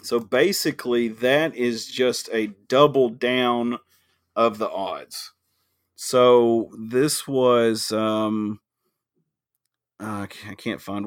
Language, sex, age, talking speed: English, male, 30-49, 105 wpm